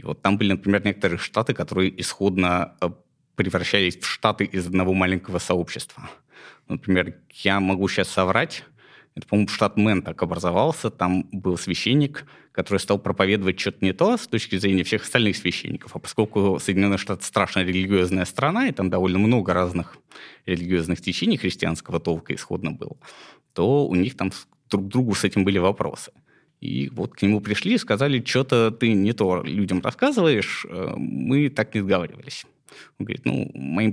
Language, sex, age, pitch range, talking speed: Russian, male, 20-39, 90-115 Hz, 160 wpm